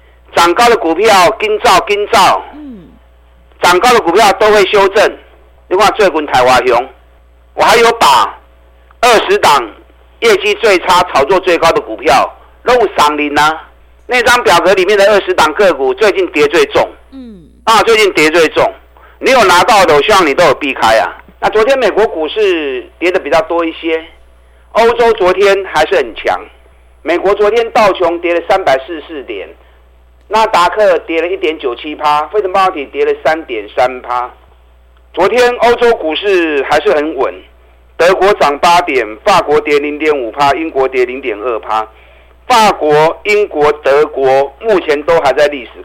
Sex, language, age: male, Chinese, 50-69